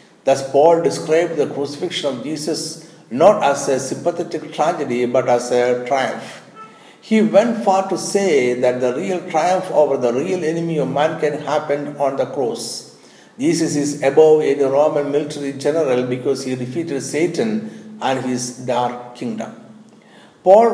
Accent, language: native, Malayalam